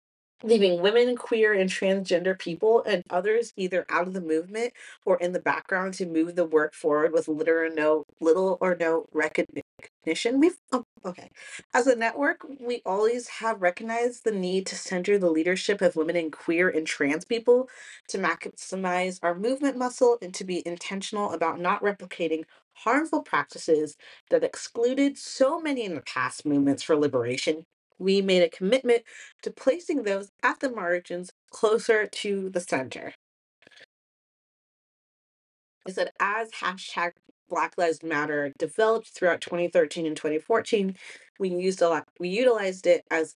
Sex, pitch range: female, 165-230 Hz